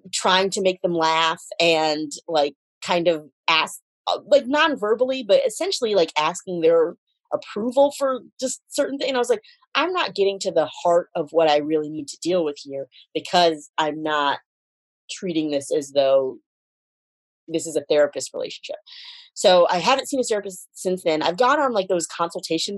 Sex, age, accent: female, 30-49, American